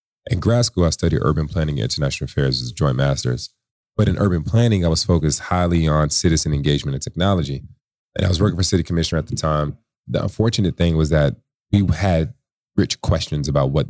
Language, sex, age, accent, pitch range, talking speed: English, male, 30-49, American, 75-90 Hz, 205 wpm